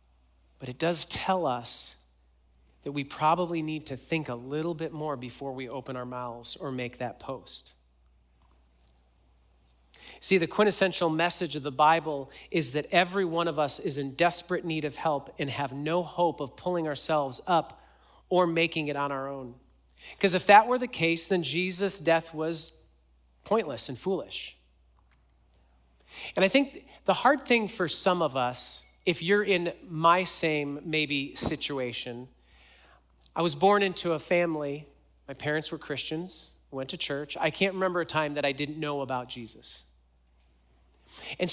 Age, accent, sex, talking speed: 40-59, American, male, 160 wpm